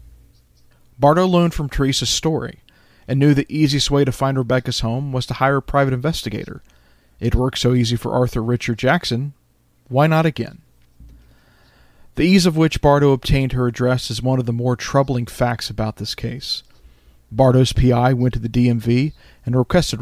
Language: English